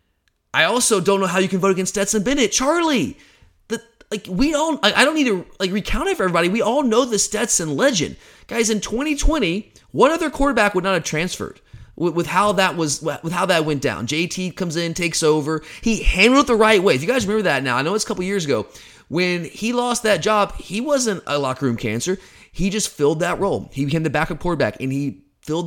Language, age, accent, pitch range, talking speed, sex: English, 30-49, American, 150-210 Hz, 240 wpm, male